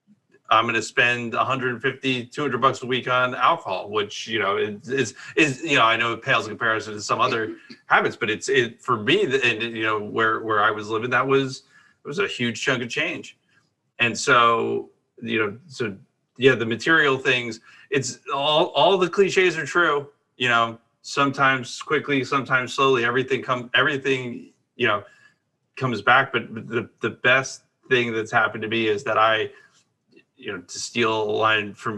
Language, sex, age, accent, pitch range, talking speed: English, male, 30-49, American, 110-140 Hz, 180 wpm